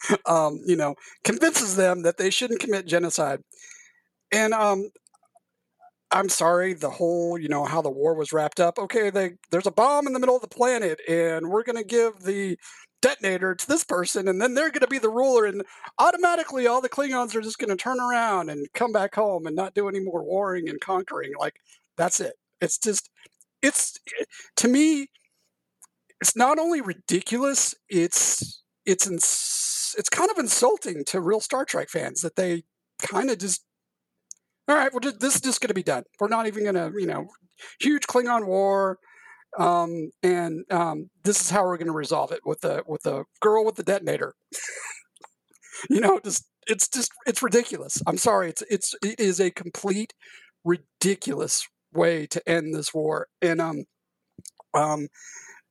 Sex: male